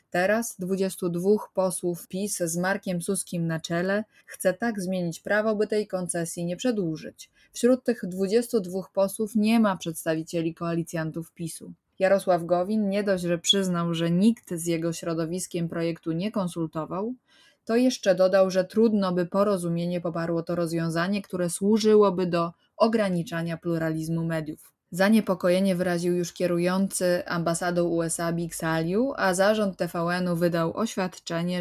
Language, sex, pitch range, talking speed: Polish, female, 165-195 Hz, 135 wpm